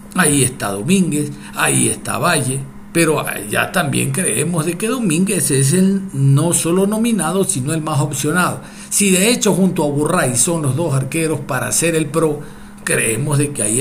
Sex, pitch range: male, 135-195 Hz